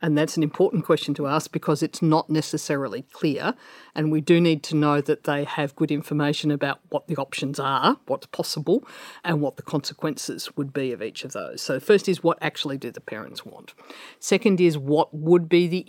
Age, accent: 50-69, Australian